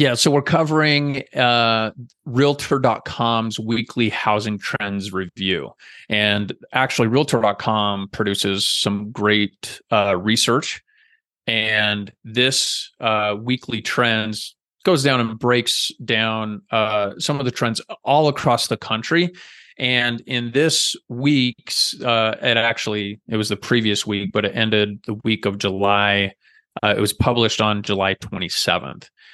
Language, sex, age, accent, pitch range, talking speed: English, male, 30-49, American, 105-125 Hz, 130 wpm